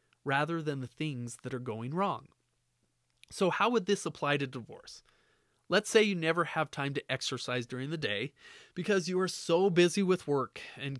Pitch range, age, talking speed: 140-195 Hz, 30-49, 185 wpm